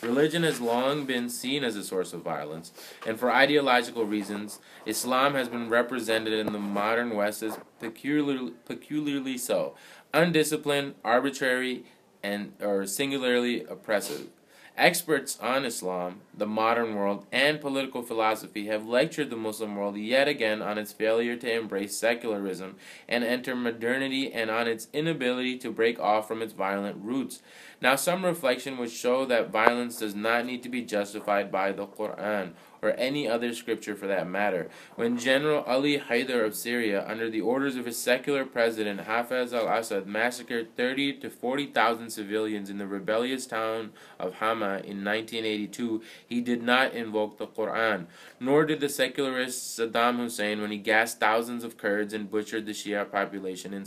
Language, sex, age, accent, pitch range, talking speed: English, male, 20-39, American, 105-125 Hz, 160 wpm